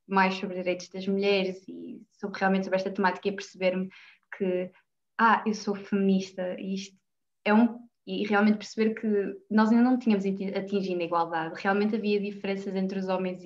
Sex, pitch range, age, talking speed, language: female, 180-200 Hz, 20-39, 185 wpm, Portuguese